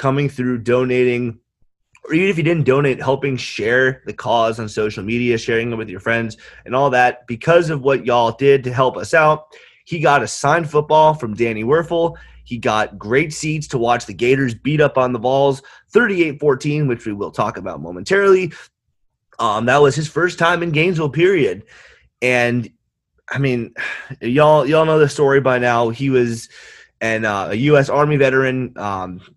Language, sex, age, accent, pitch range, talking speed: English, male, 30-49, American, 115-150 Hz, 180 wpm